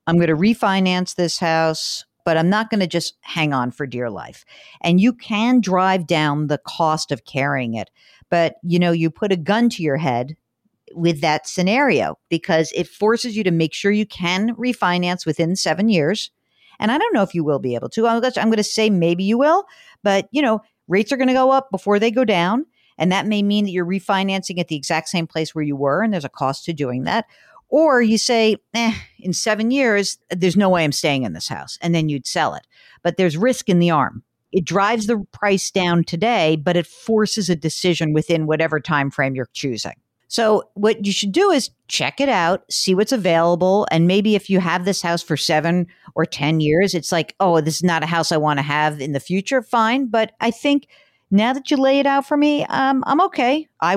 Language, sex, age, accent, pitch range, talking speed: English, female, 50-69, American, 160-220 Hz, 225 wpm